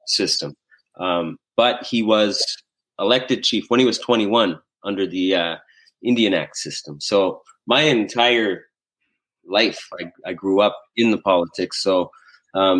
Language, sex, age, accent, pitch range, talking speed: English, male, 30-49, American, 90-115 Hz, 140 wpm